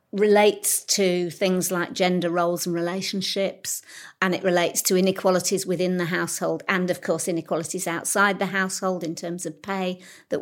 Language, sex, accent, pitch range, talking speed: English, female, British, 170-195 Hz, 160 wpm